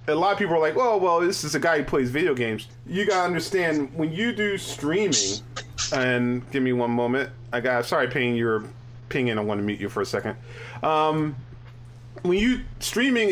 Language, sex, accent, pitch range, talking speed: English, male, American, 120-160 Hz, 205 wpm